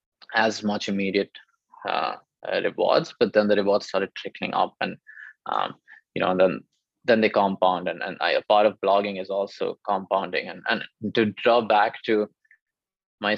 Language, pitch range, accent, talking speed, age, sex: English, 100-115 Hz, Indian, 175 wpm, 20-39, male